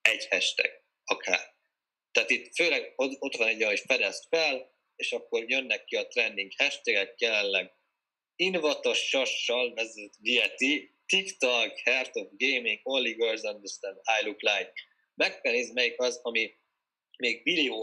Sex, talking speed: male, 135 wpm